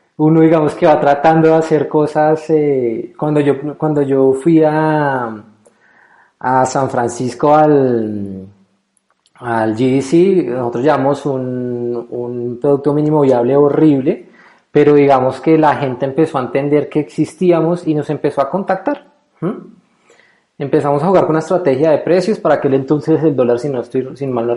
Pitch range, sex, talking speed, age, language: 120-150 Hz, male, 155 wpm, 20-39, Spanish